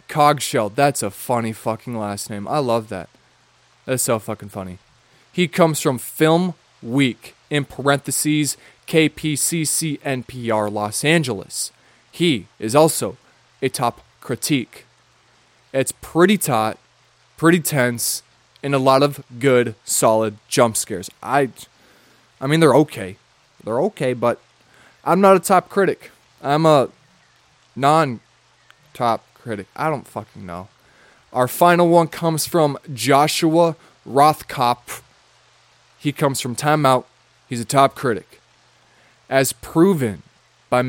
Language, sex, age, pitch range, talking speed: English, male, 20-39, 120-155 Hz, 120 wpm